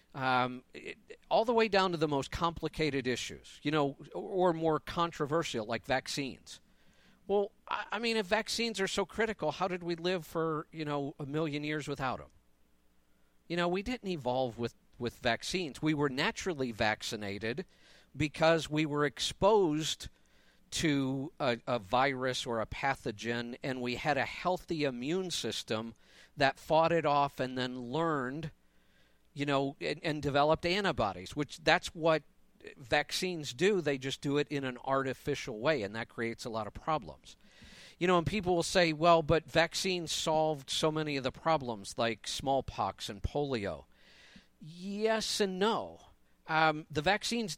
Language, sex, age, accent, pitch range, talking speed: English, male, 50-69, American, 125-170 Hz, 160 wpm